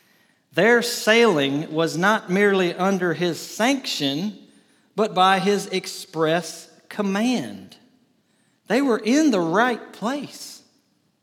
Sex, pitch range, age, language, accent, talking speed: male, 145-200 Hz, 40-59, English, American, 100 wpm